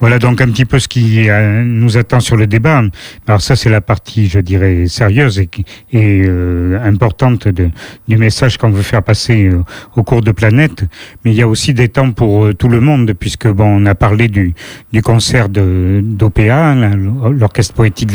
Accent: French